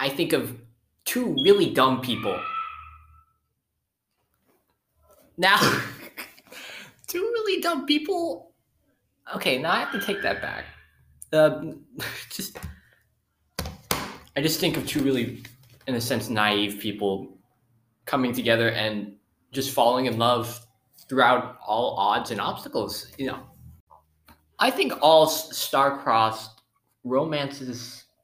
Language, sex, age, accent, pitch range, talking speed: English, male, 20-39, American, 100-145 Hz, 115 wpm